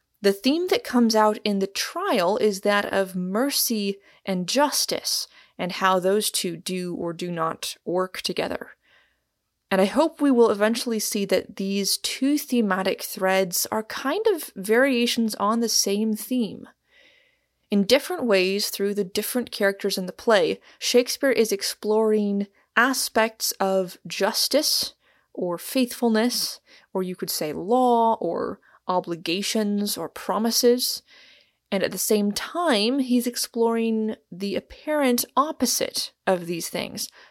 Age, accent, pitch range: 20-39, American, 190-245 Hz